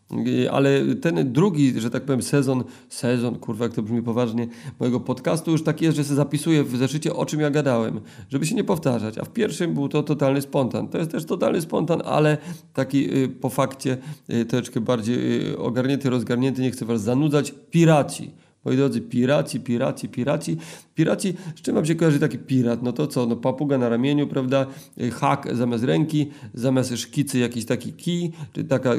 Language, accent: Polish, native